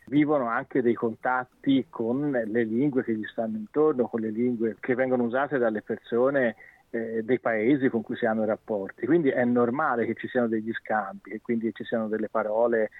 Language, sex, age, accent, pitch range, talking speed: Italian, male, 40-59, native, 115-125 Hz, 190 wpm